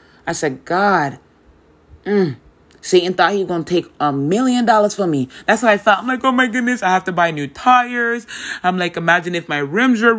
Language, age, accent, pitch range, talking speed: English, 20-39, American, 125-170 Hz, 225 wpm